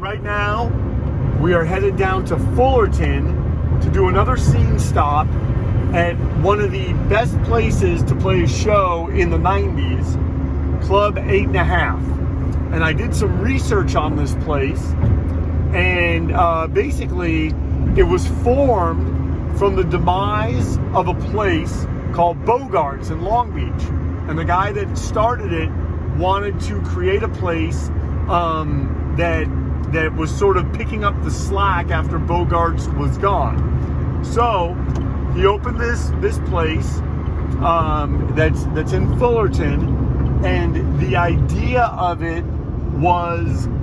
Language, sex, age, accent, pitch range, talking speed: English, male, 40-59, American, 70-90 Hz, 135 wpm